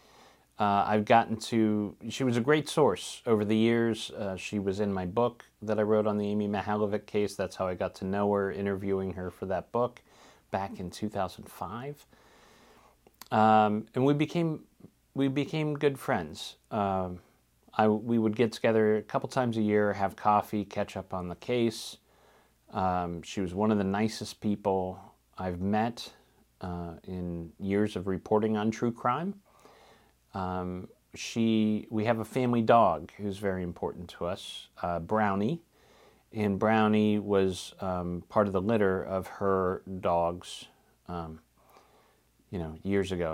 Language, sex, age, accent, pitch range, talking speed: English, male, 40-59, American, 95-110 Hz, 160 wpm